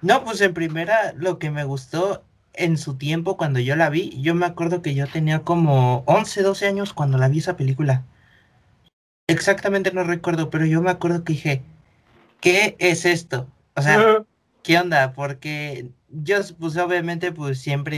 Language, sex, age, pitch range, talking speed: Spanish, male, 30-49, 130-165 Hz, 175 wpm